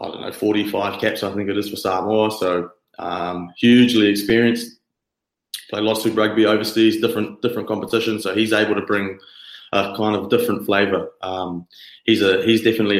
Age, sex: 20-39, male